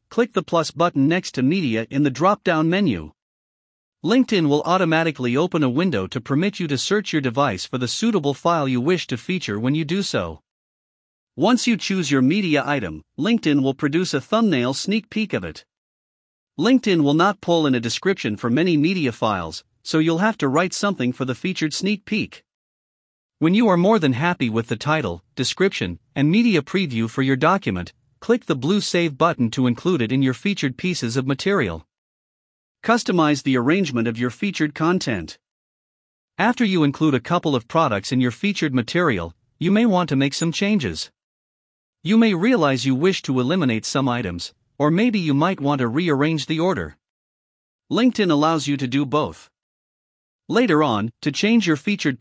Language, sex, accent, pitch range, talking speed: English, male, American, 130-185 Hz, 180 wpm